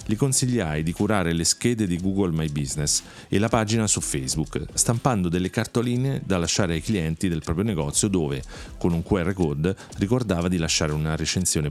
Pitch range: 80-105 Hz